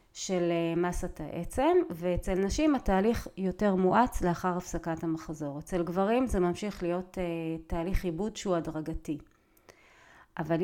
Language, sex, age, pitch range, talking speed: Hebrew, female, 30-49, 175-230 Hz, 120 wpm